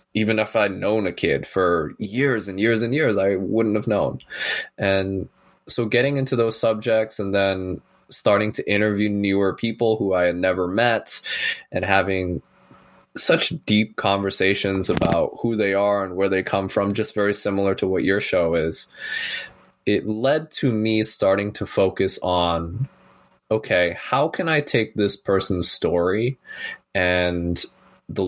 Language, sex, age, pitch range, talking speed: English, male, 20-39, 95-110 Hz, 155 wpm